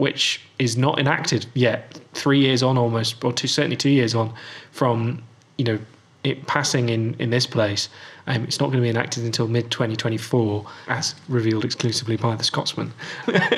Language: English